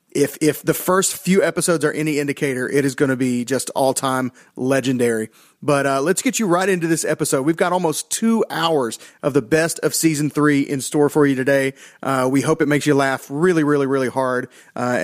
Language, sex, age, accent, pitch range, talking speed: English, male, 30-49, American, 135-175 Hz, 220 wpm